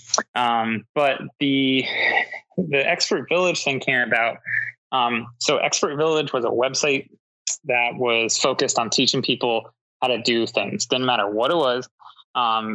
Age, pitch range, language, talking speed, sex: 20-39, 115-150 Hz, English, 150 wpm, male